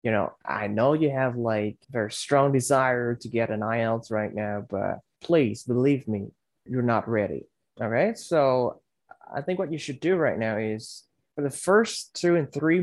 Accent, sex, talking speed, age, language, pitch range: American, male, 190 wpm, 20-39, English, 110-135 Hz